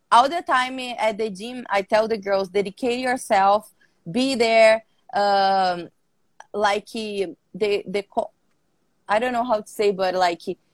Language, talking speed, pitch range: English, 140 wpm, 200-250 Hz